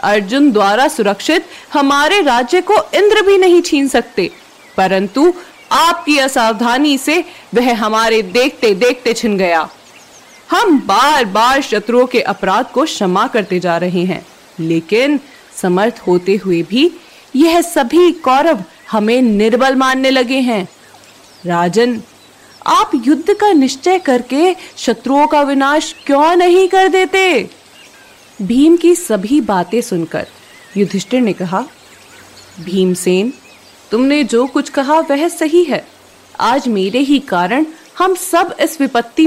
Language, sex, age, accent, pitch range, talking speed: Hindi, female, 30-49, native, 200-305 Hz, 120 wpm